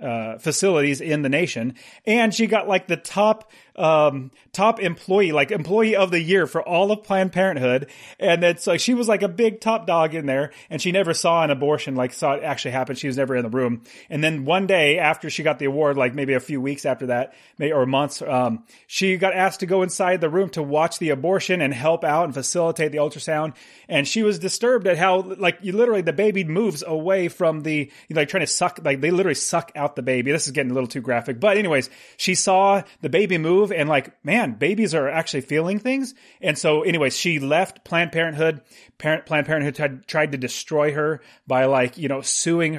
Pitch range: 140-185 Hz